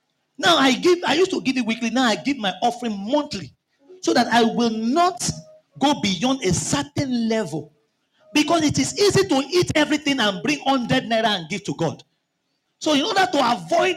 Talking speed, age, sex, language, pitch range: 195 wpm, 40-59, male, English, 185-280 Hz